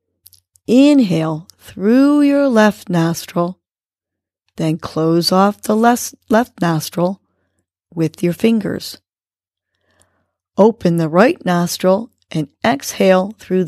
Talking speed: 90 wpm